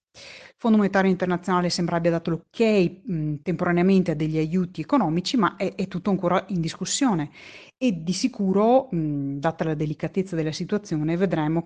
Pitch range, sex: 165-220 Hz, female